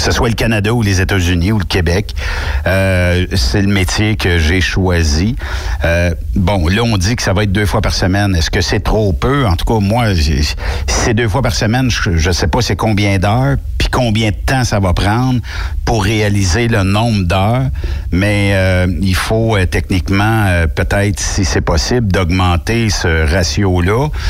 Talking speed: 195 wpm